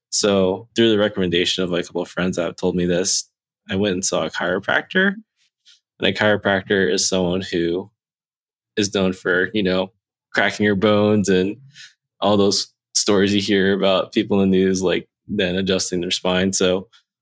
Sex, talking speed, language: male, 180 wpm, English